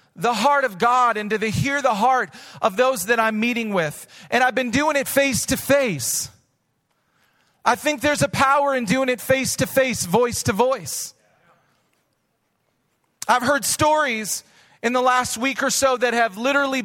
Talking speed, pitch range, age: 180 wpm, 220-260 Hz, 40-59